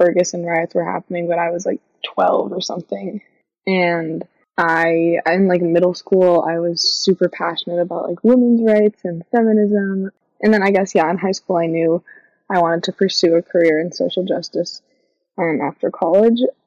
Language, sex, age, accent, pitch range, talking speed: English, female, 20-39, American, 165-195 Hz, 175 wpm